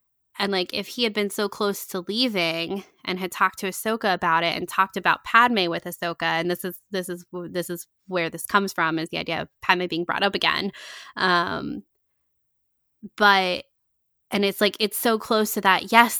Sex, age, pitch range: female, 10-29, 180-215 Hz